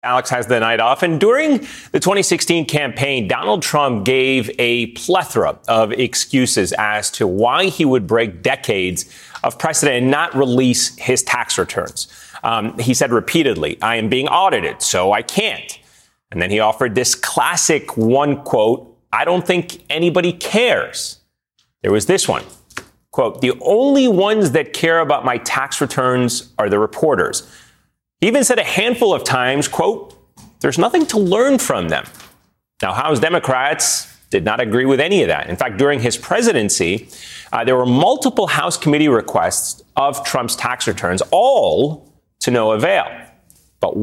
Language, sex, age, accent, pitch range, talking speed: English, male, 30-49, American, 120-180 Hz, 160 wpm